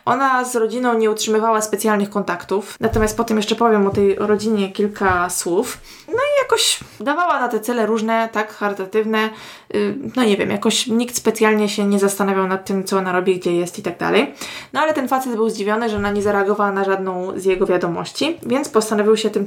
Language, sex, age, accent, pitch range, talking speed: Polish, female, 20-39, native, 200-230 Hz, 200 wpm